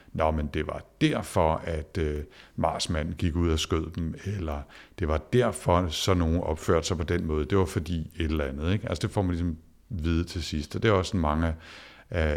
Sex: male